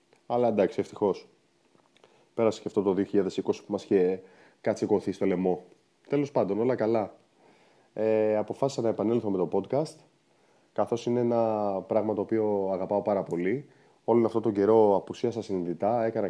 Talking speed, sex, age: 150 wpm, male, 20-39